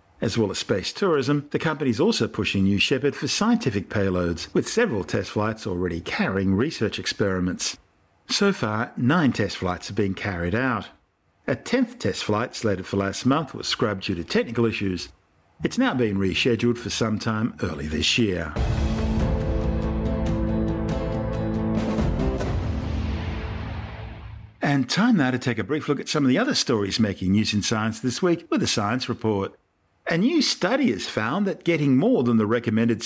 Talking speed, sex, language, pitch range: 160 wpm, male, English, 100-155 Hz